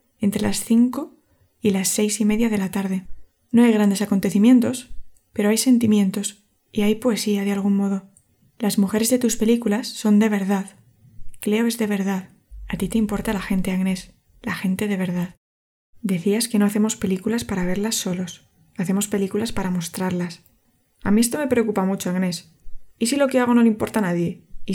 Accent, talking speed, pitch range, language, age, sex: Spanish, 185 wpm, 195-225 Hz, Spanish, 20-39, female